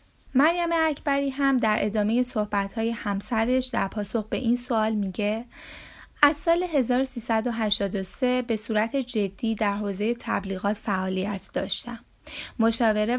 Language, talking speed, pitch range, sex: Persian, 115 wpm, 205-255 Hz, female